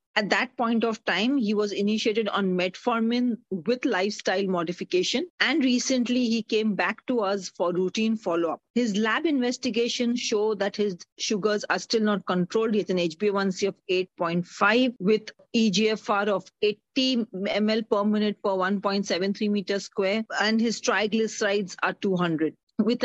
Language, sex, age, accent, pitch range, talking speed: English, female, 40-59, Indian, 195-235 Hz, 150 wpm